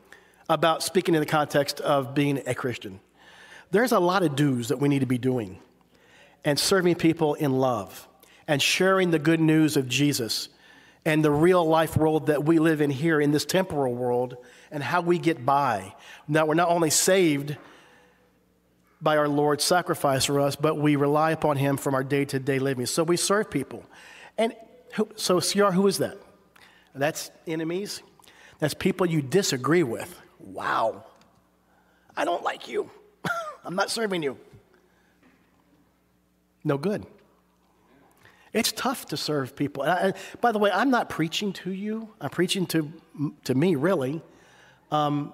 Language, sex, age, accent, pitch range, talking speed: English, male, 40-59, American, 140-175 Hz, 160 wpm